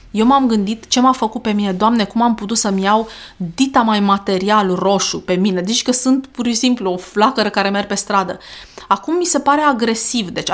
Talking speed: 215 wpm